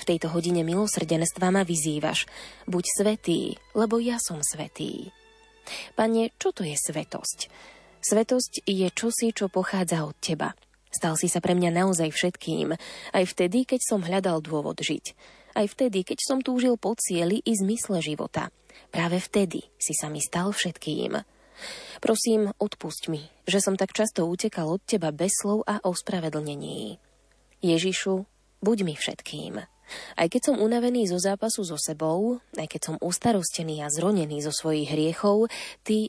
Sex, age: female, 20-39